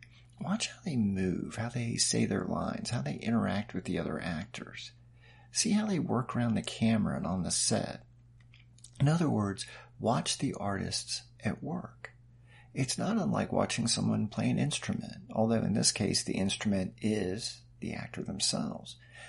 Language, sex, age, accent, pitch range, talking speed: English, male, 50-69, American, 110-125 Hz, 165 wpm